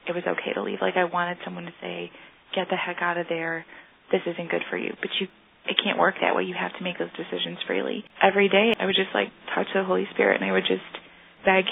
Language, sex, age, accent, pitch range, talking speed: English, female, 30-49, American, 180-195 Hz, 265 wpm